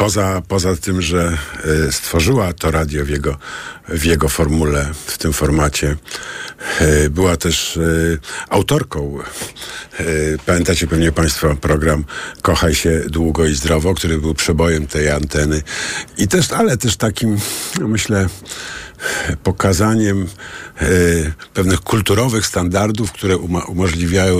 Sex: male